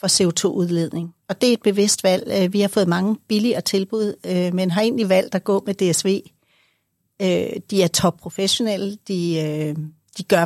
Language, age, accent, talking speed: Danish, 60-79, native, 155 wpm